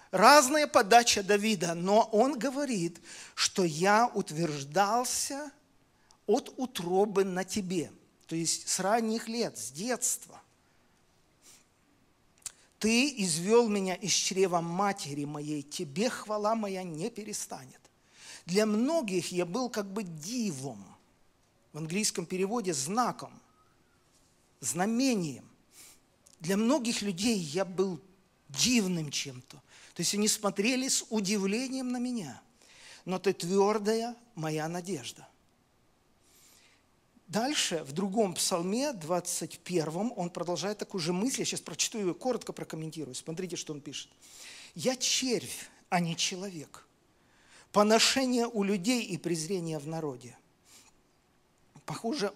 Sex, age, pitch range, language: male, 50-69, 170-225 Hz, Russian